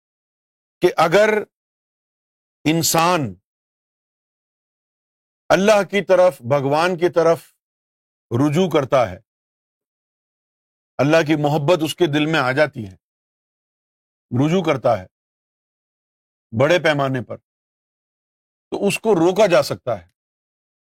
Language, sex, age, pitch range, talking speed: Urdu, male, 50-69, 130-180 Hz, 100 wpm